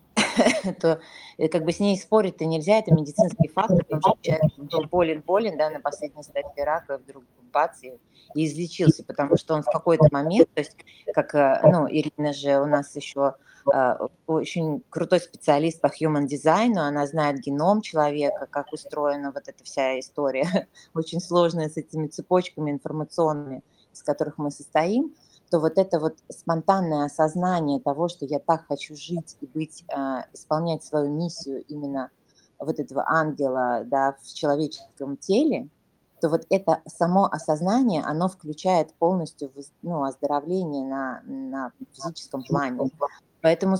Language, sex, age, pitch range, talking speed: Russian, female, 30-49, 145-175 Hz, 140 wpm